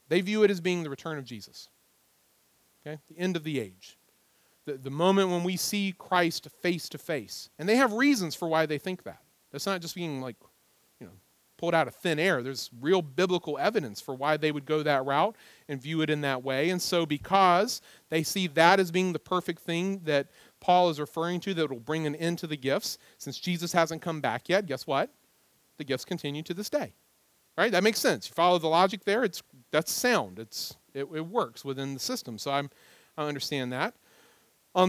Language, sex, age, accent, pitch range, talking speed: English, male, 40-59, American, 145-180 Hz, 215 wpm